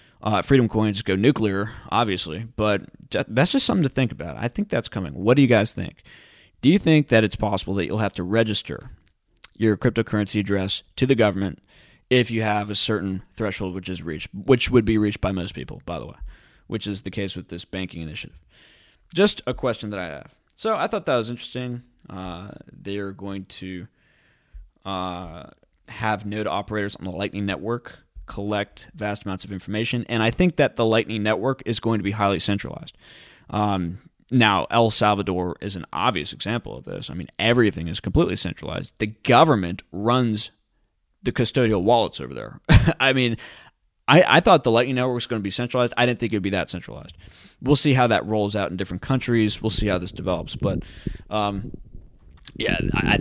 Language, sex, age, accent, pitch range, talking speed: English, male, 20-39, American, 95-120 Hz, 195 wpm